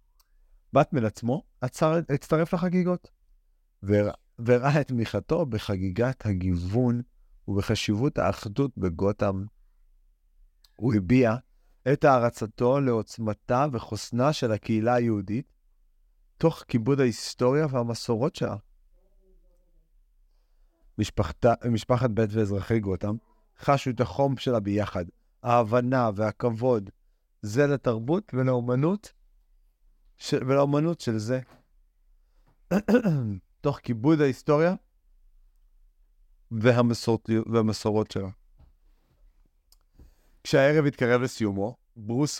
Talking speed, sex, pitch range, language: 80 wpm, male, 100-130 Hz, Hebrew